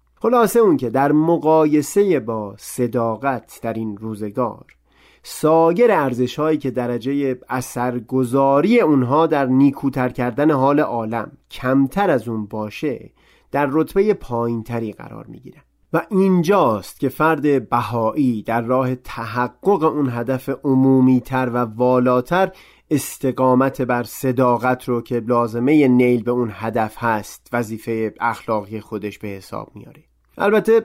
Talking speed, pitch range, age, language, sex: 120 wpm, 120-155 Hz, 30-49, Persian, male